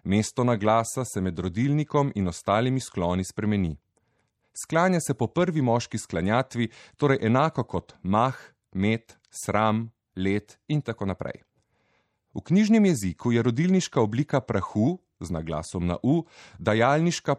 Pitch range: 100-130 Hz